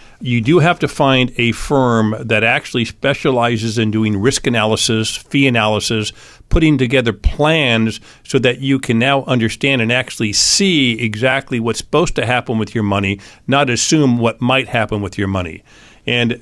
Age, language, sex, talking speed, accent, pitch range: 50-69, English, male, 165 wpm, American, 115-145 Hz